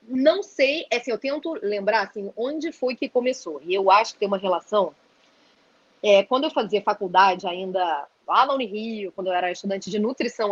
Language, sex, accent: Portuguese, female, Brazilian